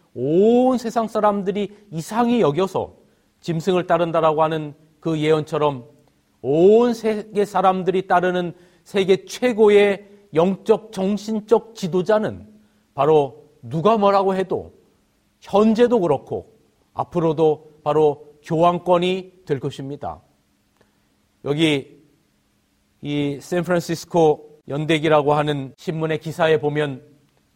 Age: 40-59